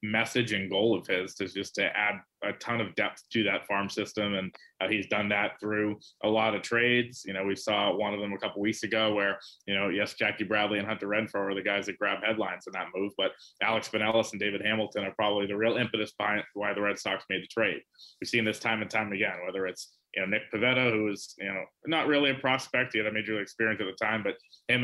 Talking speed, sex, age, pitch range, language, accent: 255 wpm, male, 20-39, 100-115 Hz, English, American